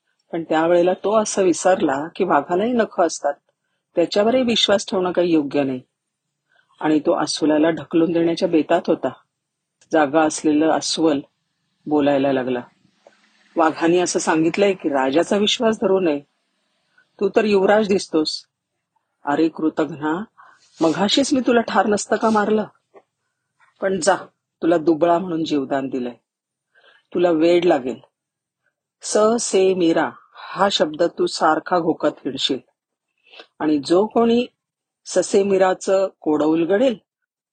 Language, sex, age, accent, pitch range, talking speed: Marathi, female, 40-59, native, 150-195 Hz, 110 wpm